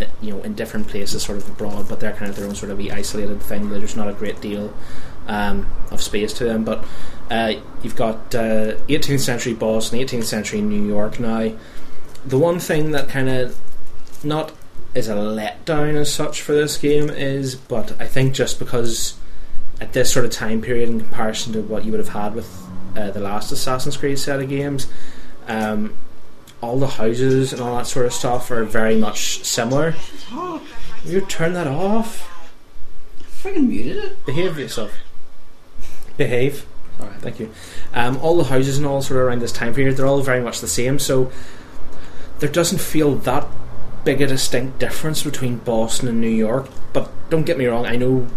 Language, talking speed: English, 190 wpm